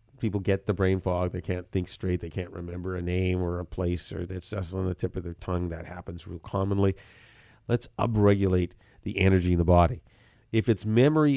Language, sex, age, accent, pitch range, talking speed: English, male, 50-69, American, 95-115 Hz, 210 wpm